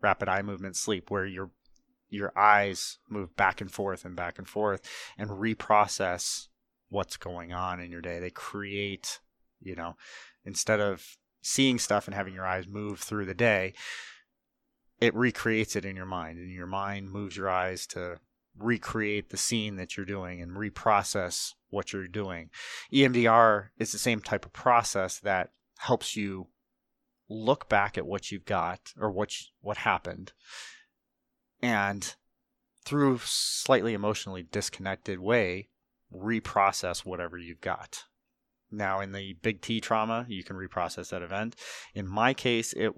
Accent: American